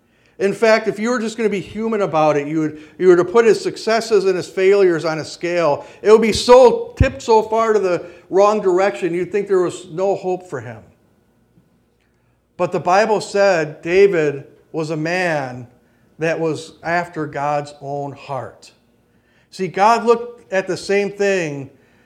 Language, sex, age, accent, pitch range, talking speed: English, male, 50-69, American, 145-195 Hz, 175 wpm